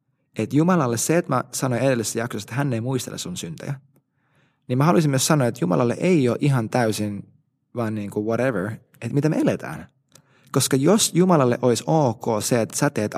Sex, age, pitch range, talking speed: male, 20-39, 115-155 Hz, 190 wpm